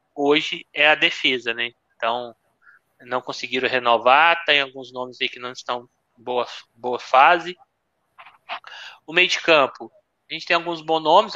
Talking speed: 160 wpm